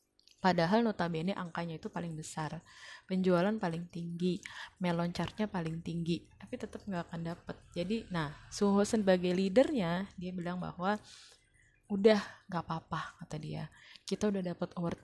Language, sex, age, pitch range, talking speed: Indonesian, female, 20-39, 170-200 Hz, 135 wpm